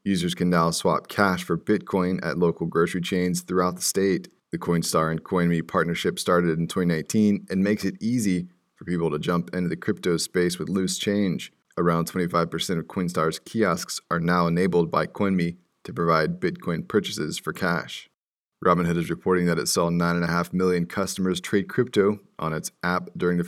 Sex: male